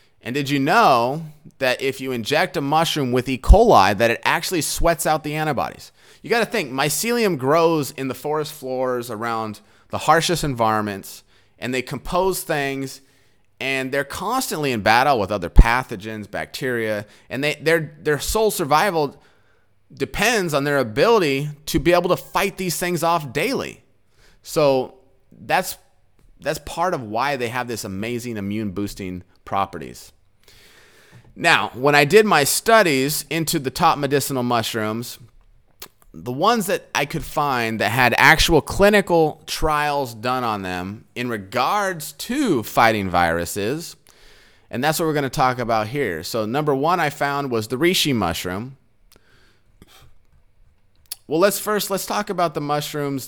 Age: 30-49